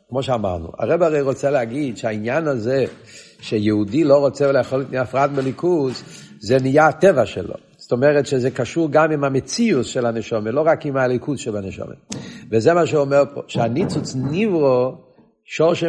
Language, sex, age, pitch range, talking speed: Hebrew, male, 50-69, 115-145 Hz, 155 wpm